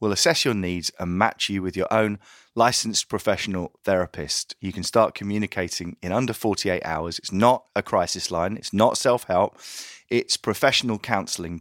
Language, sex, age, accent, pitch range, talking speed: English, male, 30-49, British, 90-110 Hz, 165 wpm